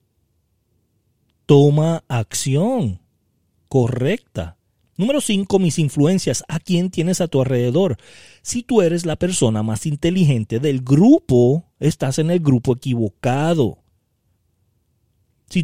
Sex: male